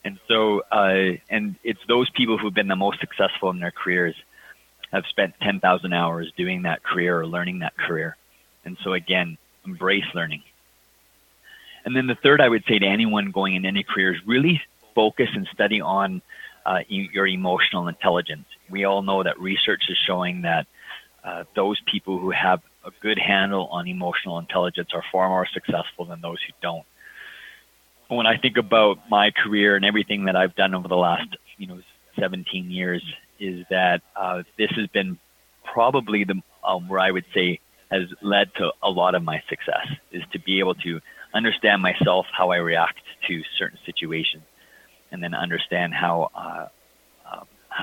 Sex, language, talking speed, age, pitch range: male, English, 175 wpm, 30-49, 90-100 Hz